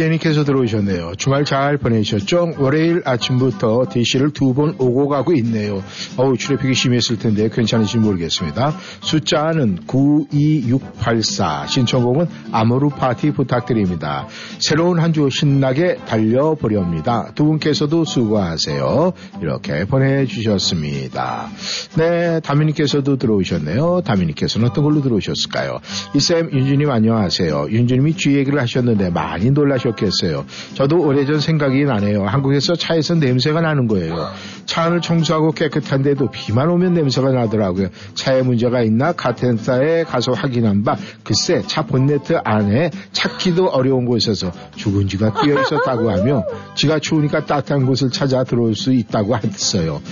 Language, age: Korean, 60-79